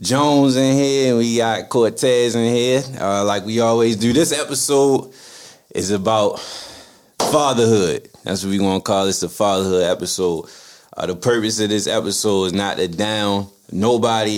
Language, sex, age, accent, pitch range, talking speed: English, male, 20-39, American, 90-110 Hz, 165 wpm